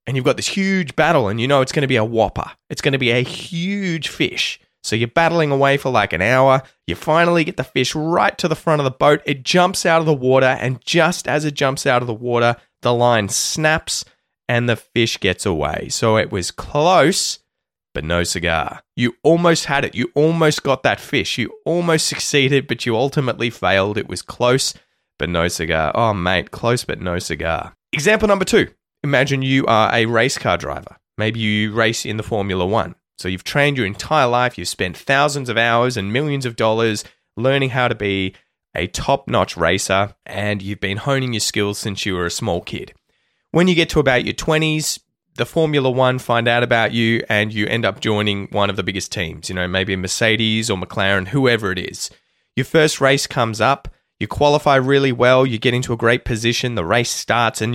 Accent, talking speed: Australian, 210 wpm